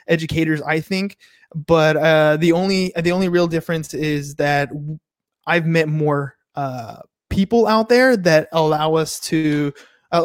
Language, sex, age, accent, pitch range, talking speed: English, male, 20-39, American, 155-185 Hz, 145 wpm